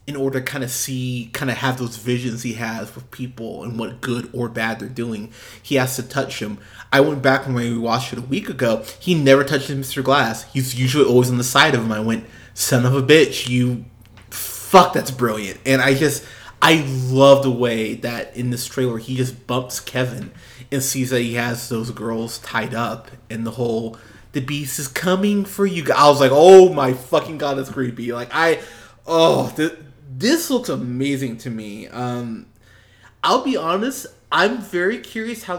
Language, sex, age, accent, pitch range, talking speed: English, male, 20-39, American, 115-140 Hz, 200 wpm